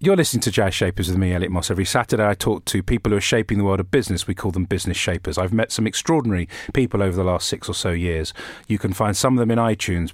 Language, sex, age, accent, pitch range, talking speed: English, male, 40-59, British, 95-120 Hz, 280 wpm